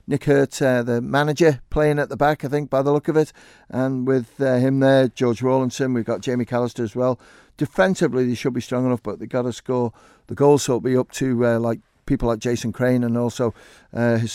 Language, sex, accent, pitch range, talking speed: English, male, British, 125-140 Hz, 240 wpm